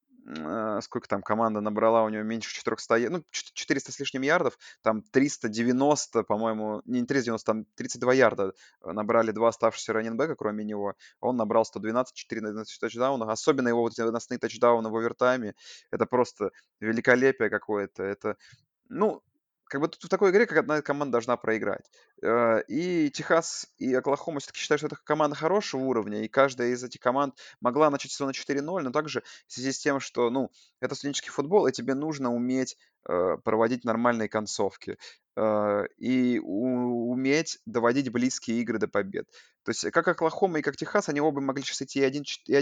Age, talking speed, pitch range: 20-39, 165 wpm, 115-140 Hz